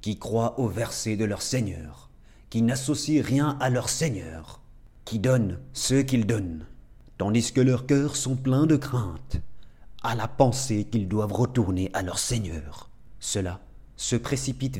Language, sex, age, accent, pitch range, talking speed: French, male, 30-49, French, 105-130 Hz, 155 wpm